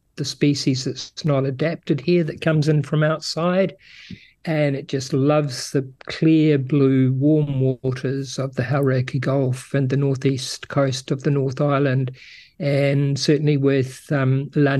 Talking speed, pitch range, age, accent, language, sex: 150 wpm, 135-160 Hz, 50-69, Australian, English, male